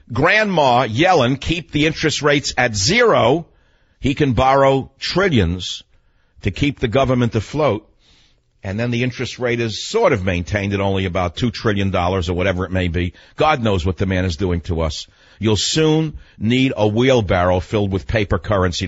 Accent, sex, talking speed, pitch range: American, male, 175 wpm, 90-125 Hz